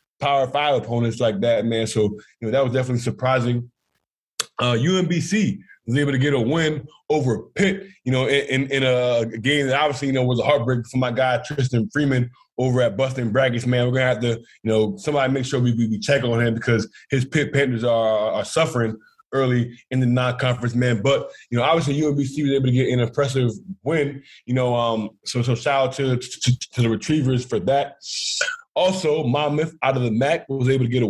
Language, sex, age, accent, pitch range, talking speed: English, male, 20-39, American, 120-140 Hz, 215 wpm